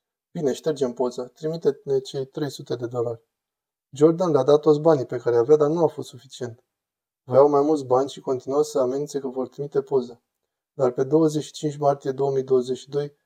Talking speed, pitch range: 170 wpm, 125-150 Hz